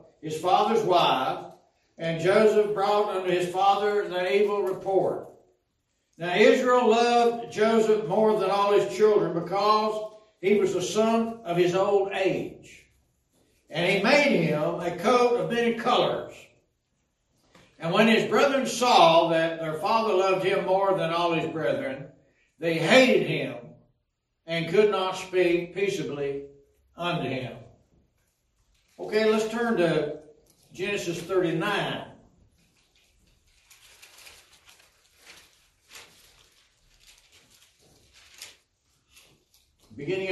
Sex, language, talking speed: male, English, 105 wpm